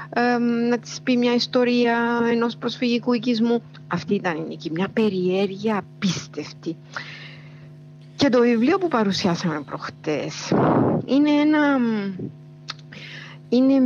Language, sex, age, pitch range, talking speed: Greek, female, 60-79, 155-225 Hz, 105 wpm